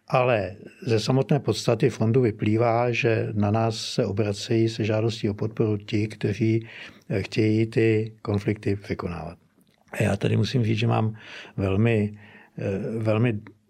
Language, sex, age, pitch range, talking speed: Slovak, male, 60-79, 100-115 Hz, 130 wpm